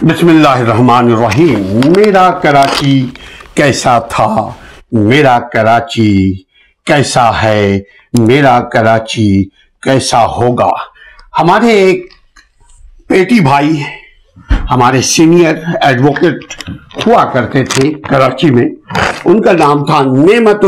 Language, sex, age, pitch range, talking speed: Urdu, male, 60-79, 130-175 Hz, 95 wpm